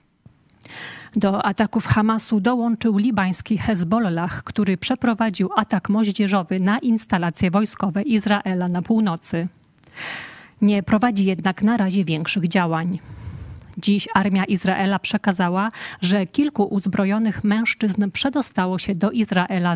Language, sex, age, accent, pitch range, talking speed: Polish, female, 40-59, native, 185-220 Hz, 105 wpm